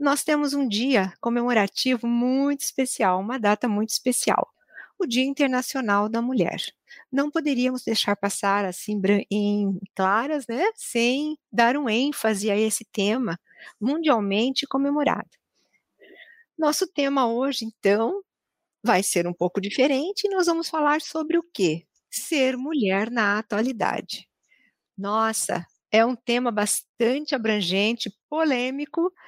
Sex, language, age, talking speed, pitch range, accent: female, Portuguese, 50-69, 125 wpm, 205-290 Hz, Brazilian